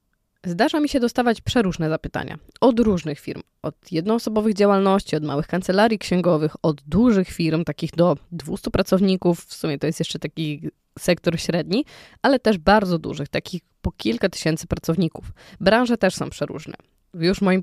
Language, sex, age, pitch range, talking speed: Polish, female, 20-39, 165-220 Hz, 165 wpm